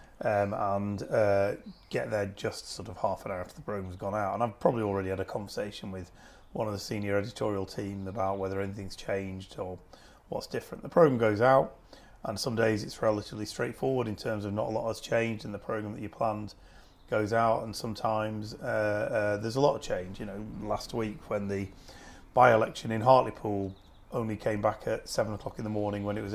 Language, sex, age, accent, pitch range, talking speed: English, male, 30-49, British, 100-115 Hz, 215 wpm